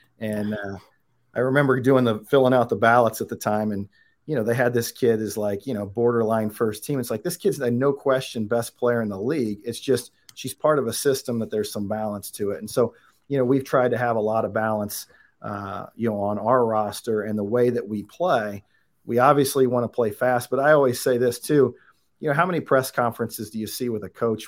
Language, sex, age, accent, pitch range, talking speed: English, male, 40-59, American, 110-130 Hz, 245 wpm